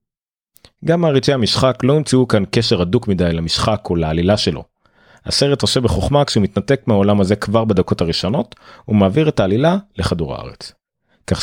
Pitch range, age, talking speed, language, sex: 90-130 Hz, 30-49, 150 wpm, Hebrew, male